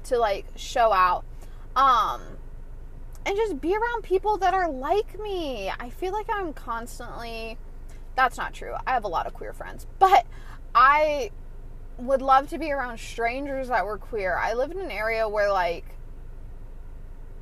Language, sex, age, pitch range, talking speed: English, female, 20-39, 230-370 Hz, 160 wpm